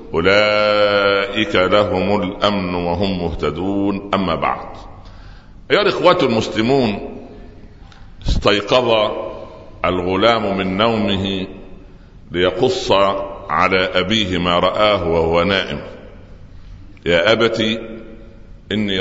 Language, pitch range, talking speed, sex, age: Arabic, 90-105 Hz, 75 wpm, male, 60-79